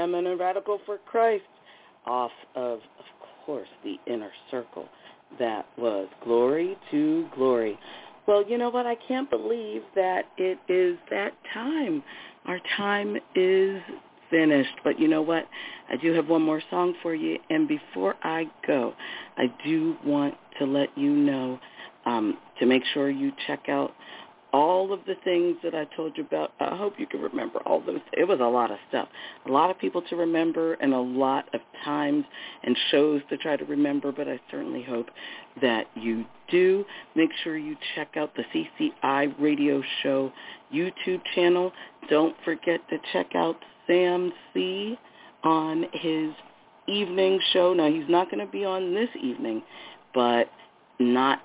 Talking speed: 165 wpm